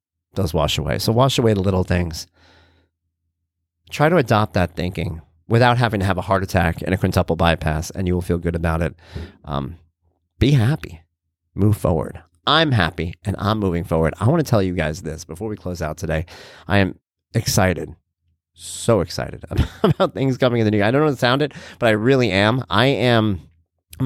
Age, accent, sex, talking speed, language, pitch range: 30-49, American, male, 200 wpm, English, 80-105 Hz